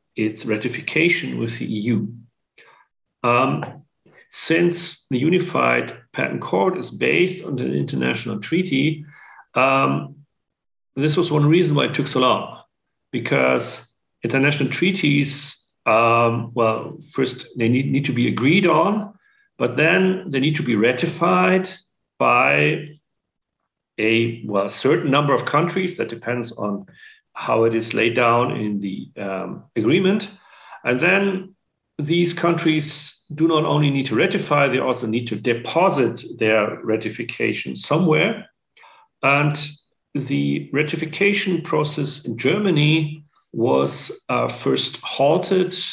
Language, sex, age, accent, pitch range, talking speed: English, male, 40-59, German, 115-165 Hz, 125 wpm